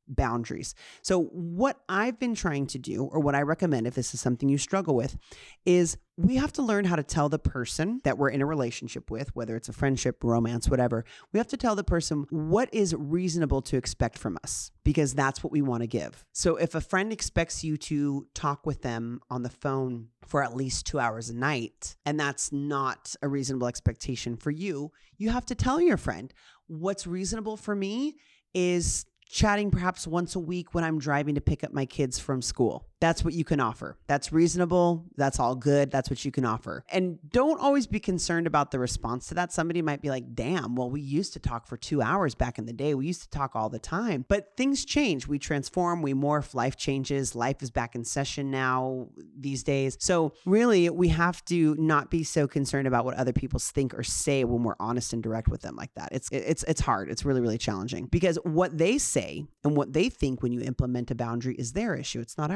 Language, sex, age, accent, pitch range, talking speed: English, male, 30-49, American, 130-175 Hz, 225 wpm